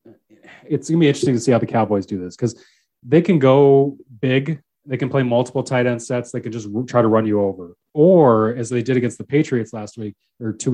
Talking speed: 235 wpm